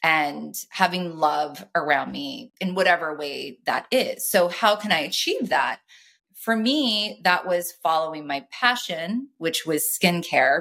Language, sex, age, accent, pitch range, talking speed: English, female, 30-49, American, 155-190 Hz, 145 wpm